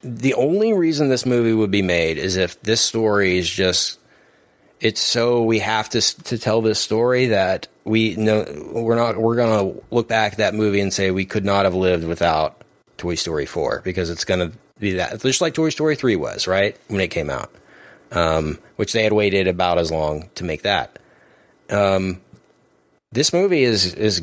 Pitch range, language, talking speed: 90-115 Hz, English, 190 wpm